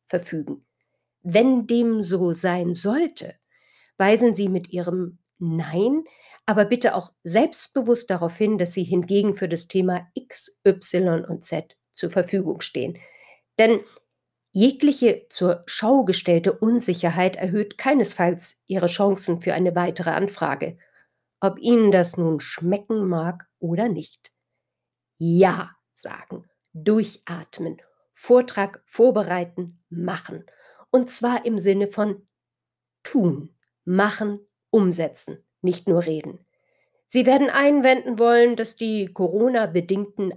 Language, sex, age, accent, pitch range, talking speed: German, female, 50-69, German, 175-225 Hz, 115 wpm